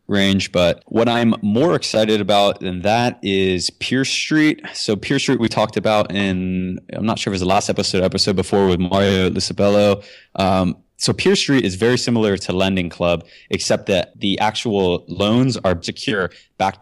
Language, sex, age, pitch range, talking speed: English, male, 20-39, 95-110 Hz, 185 wpm